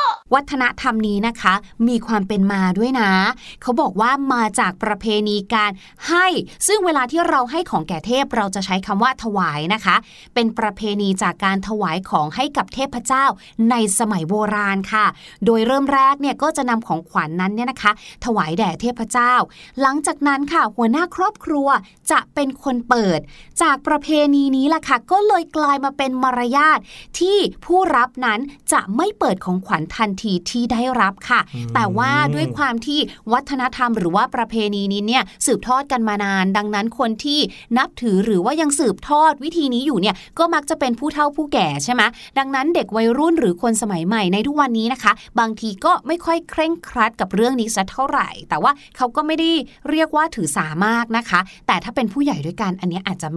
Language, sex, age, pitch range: Thai, female, 20-39, 205-280 Hz